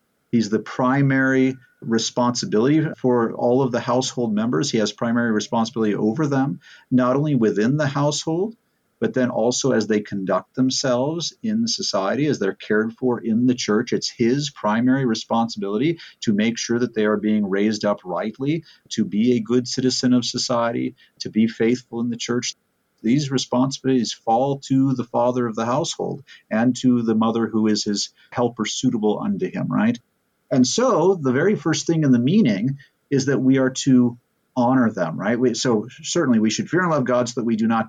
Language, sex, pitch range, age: English, male, 110-140 Hz, 50-69